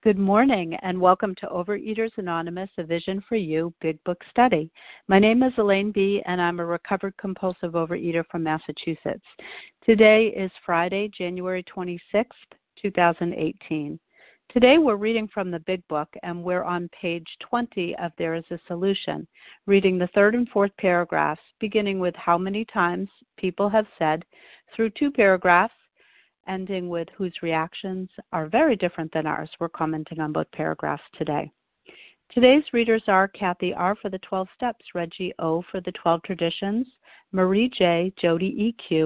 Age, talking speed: 50-69, 155 wpm